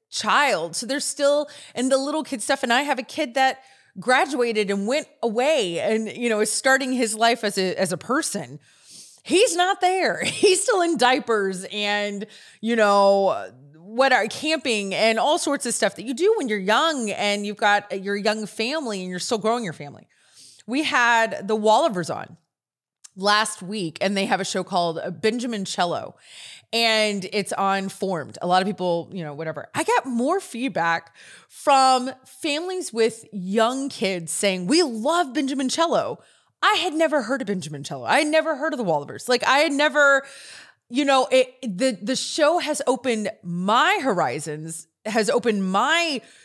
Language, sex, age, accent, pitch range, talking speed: English, female, 30-49, American, 200-275 Hz, 180 wpm